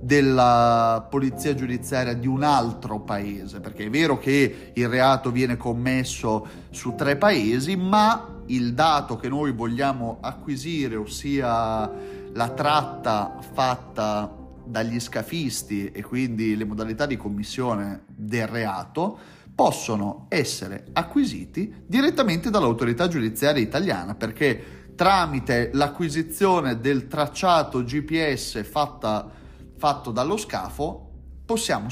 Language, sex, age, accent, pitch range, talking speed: Italian, male, 30-49, native, 115-160 Hz, 105 wpm